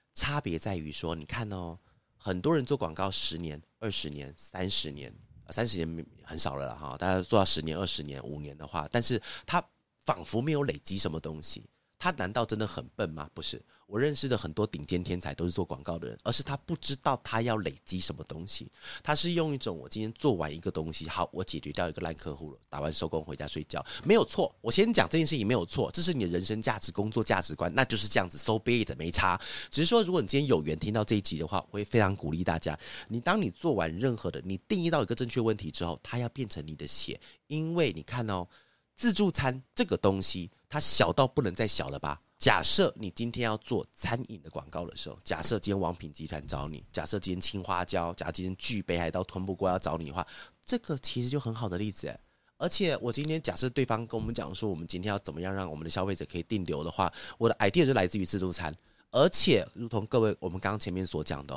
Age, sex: 30-49, male